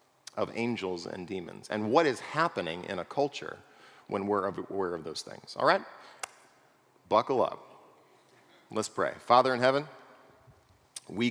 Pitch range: 95-125 Hz